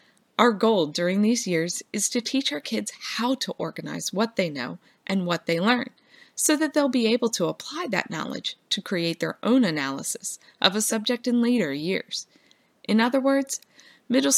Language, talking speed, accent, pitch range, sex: English, 185 wpm, American, 175-245 Hz, female